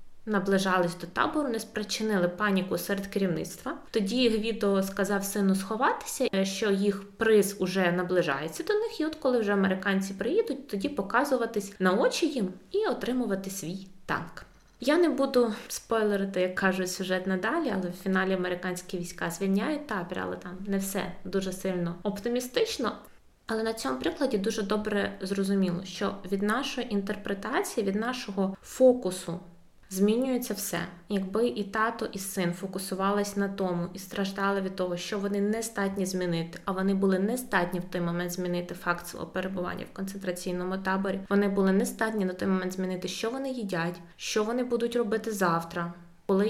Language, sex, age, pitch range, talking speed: Ukrainian, female, 20-39, 185-225 Hz, 155 wpm